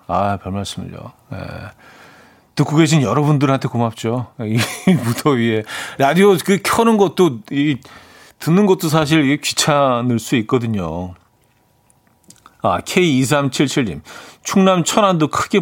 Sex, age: male, 40-59